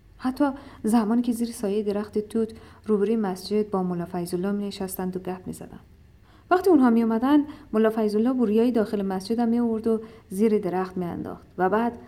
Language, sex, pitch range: Persian, female, 185-235 Hz